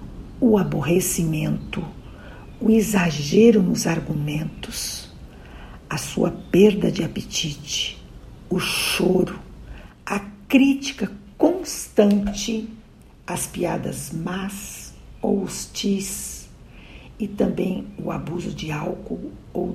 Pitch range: 170-225 Hz